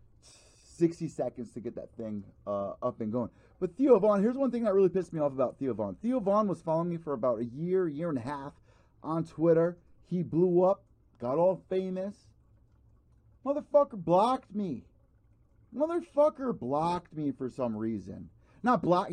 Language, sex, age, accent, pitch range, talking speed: English, male, 30-49, American, 125-185 Hz, 175 wpm